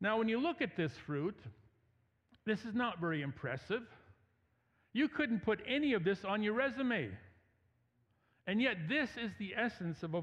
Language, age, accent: English, 50-69, American